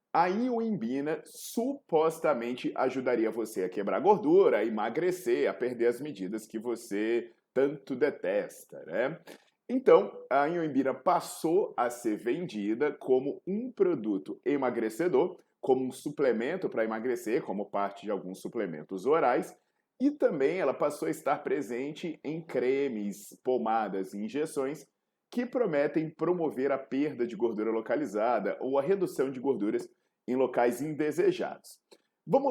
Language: Portuguese